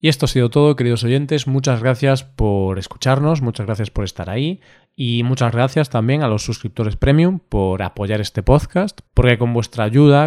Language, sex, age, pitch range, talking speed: Spanish, male, 20-39, 115-140 Hz, 185 wpm